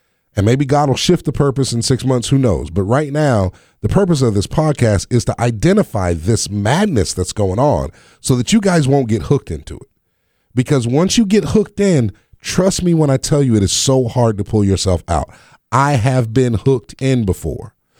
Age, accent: 30-49, American